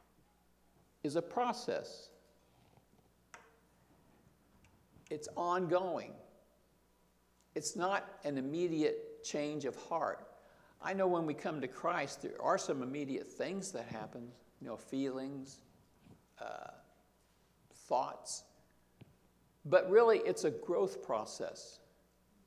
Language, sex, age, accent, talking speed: English, male, 60-79, American, 100 wpm